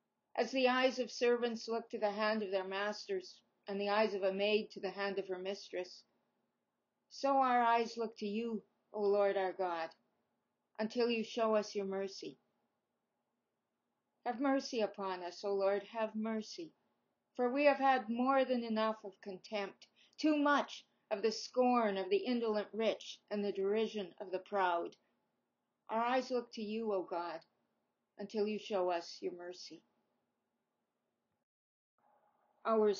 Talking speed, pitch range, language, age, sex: 155 wpm, 195-245 Hz, English, 50-69, female